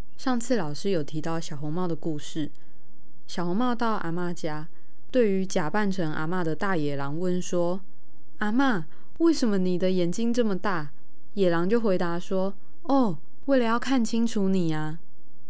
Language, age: Chinese, 20-39